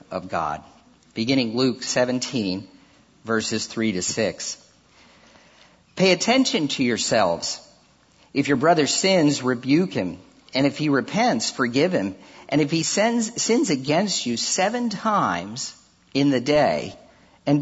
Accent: American